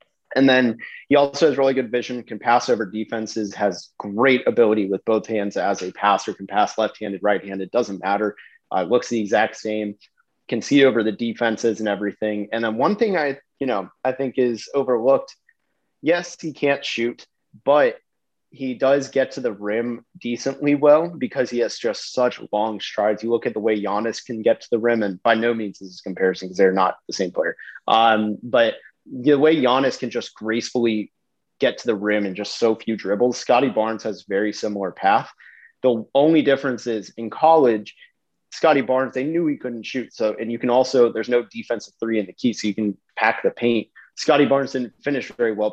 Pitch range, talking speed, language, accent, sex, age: 105-130 Hz, 200 wpm, English, American, male, 30-49